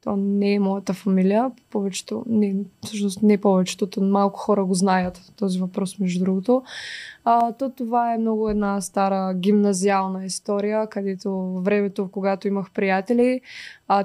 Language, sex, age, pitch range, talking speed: Bulgarian, female, 20-39, 195-220 Hz, 140 wpm